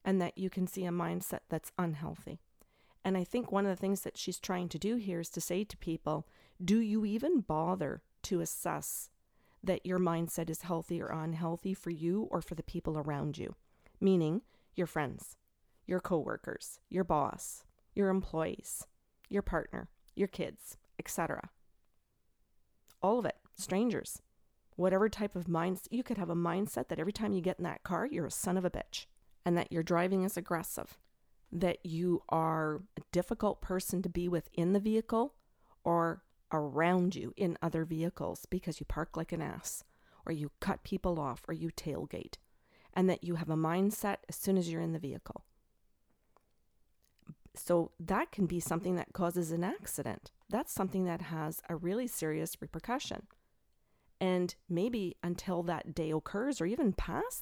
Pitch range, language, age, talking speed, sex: 165-190 Hz, English, 40-59, 175 wpm, female